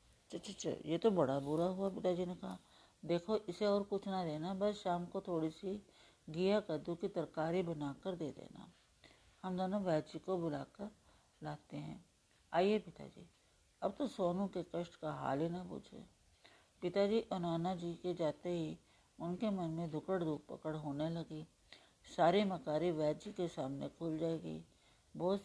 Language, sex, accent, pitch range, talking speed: Hindi, female, native, 160-190 Hz, 170 wpm